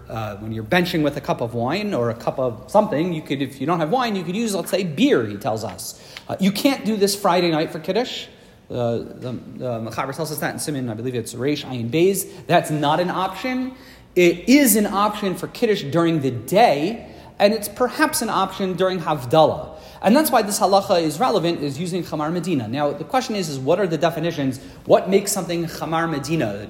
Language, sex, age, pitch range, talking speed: English, male, 40-59, 150-205 Hz, 220 wpm